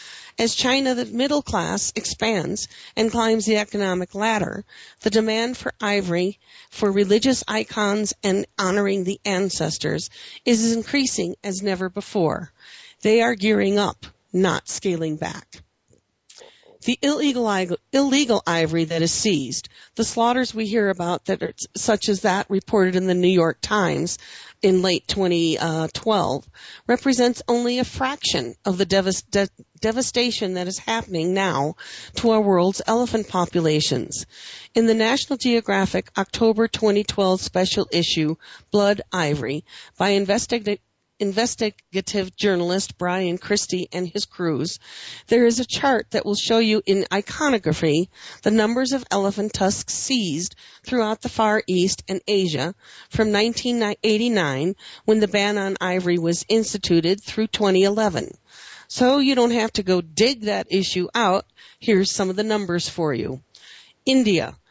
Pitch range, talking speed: 180-225 Hz, 135 wpm